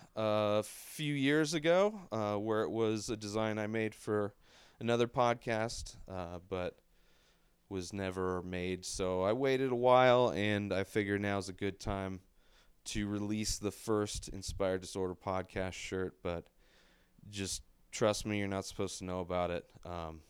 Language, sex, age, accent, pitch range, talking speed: English, male, 30-49, American, 90-105 Hz, 155 wpm